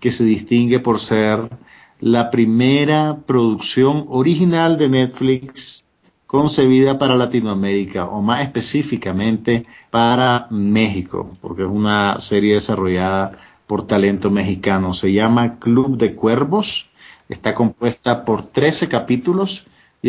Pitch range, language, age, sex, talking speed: 110-135 Hz, Spanish, 40-59, male, 115 wpm